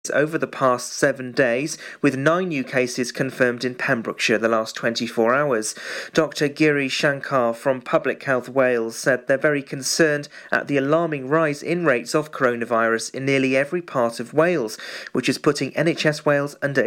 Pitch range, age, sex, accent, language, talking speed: 130-155 Hz, 40-59, male, British, English, 165 wpm